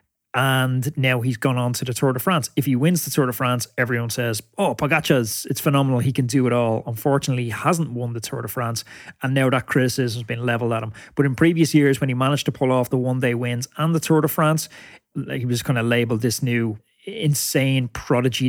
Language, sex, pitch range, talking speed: English, male, 120-135 Hz, 235 wpm